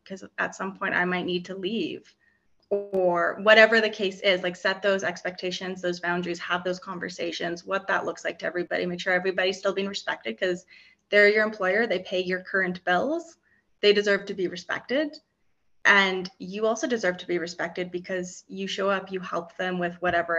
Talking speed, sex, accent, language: 190 wpm, female, American, English